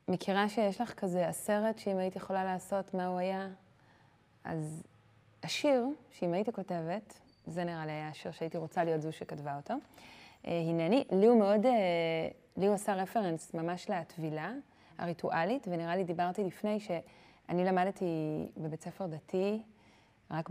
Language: Hebrew